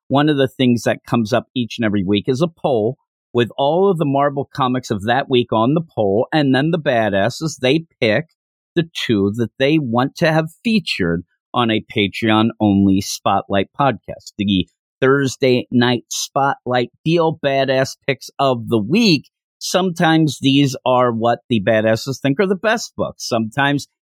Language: English